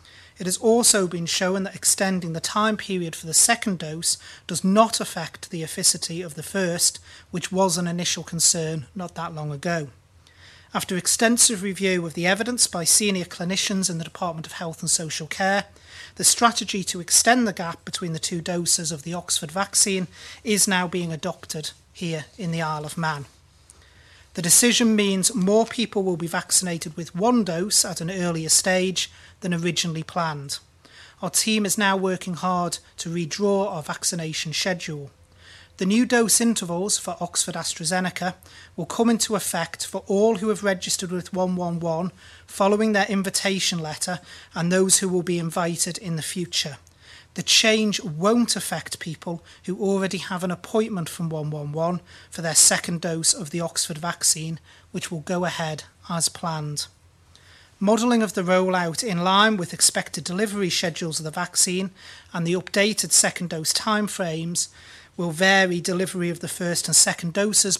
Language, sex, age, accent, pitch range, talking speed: English, male, 30-49, British, 165-195 Hz, 165 wpm